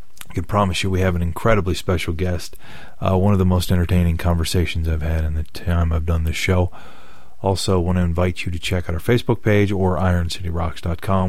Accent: American